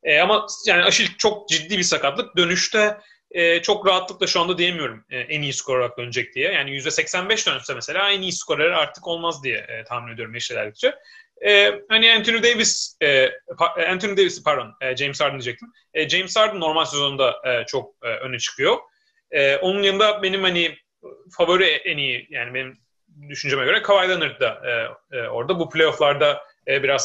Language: Turkish